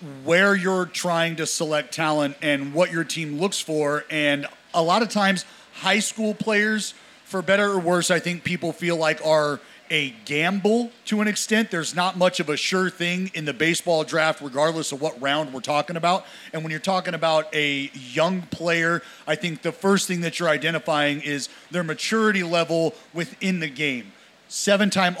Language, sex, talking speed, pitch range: English, male, 185 wpm, 150-185 Hz